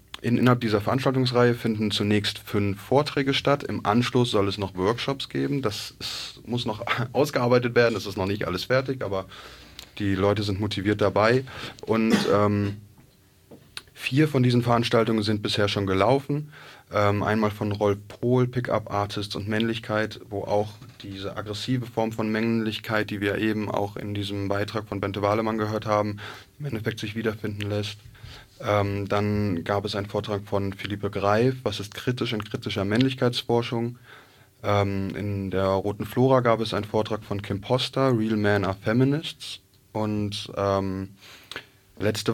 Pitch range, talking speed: 100-115 Hz, 155 wpm